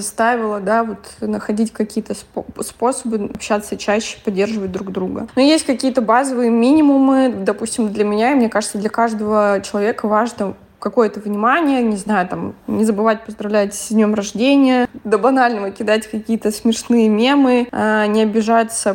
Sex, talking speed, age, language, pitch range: female, 145 wpm, 20-39, Russian, 210-235 Hz